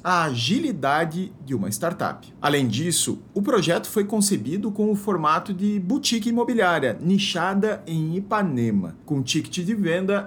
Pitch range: 140-200 Hz